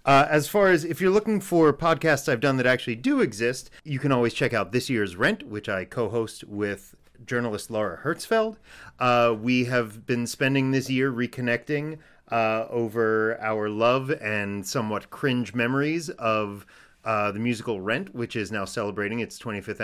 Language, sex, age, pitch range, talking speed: English, male, 30-49, 110-140 Hz, 170 wpm